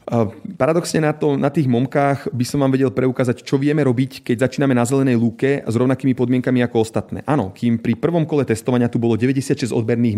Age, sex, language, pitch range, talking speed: 30-49, male, Slovak, 115-135 Hz, 190 wpm